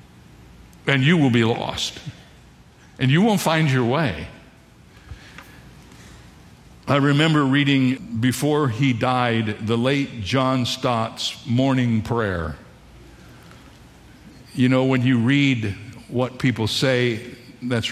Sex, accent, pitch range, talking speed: male, American, 115-140 Hz, 105 wpm